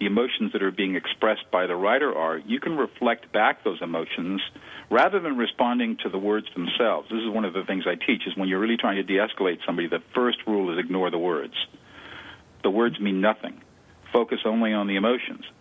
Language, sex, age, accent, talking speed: English, male, 50-69, American, 210 wpm